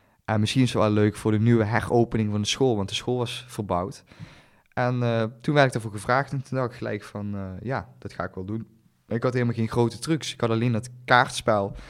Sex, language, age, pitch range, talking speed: male, Dutch, 20-39, 100-115 Hz, 245 wpm